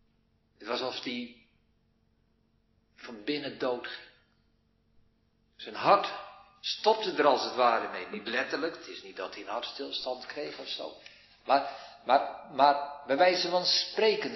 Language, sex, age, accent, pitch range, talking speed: Dutch, male, 50-69, Dutch, 135-220 Hz, 145 wpm